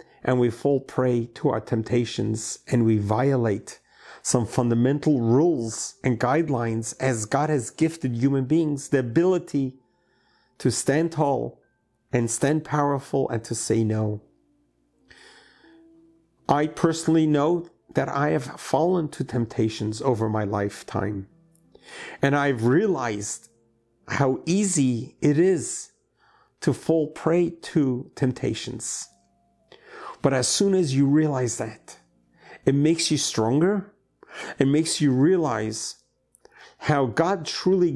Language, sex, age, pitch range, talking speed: English, male, 50-69, 115-160 Hz, 120 wpm